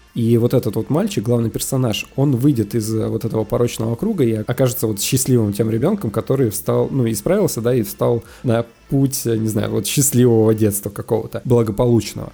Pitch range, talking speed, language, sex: 110-135 Hz, 175 wpm, Russian, male